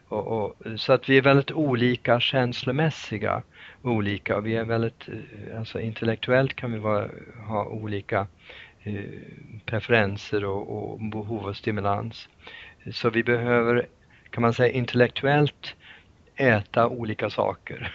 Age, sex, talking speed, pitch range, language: 50-69, male, 120 wpm, 105-125 Hz, Swedish